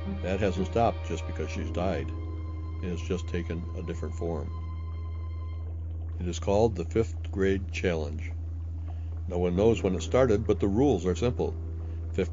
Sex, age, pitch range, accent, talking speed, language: male, 60-79, 80-95 Hz, American, 160 wpm, English